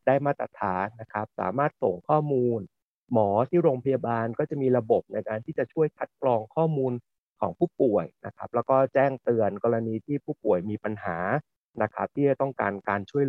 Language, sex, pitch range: Thai, male, 110-145 Hz